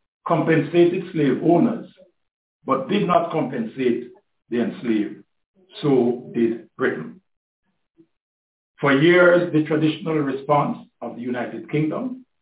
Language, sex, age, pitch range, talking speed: English, male, 60-79, 125-170 Hz, 100 wpm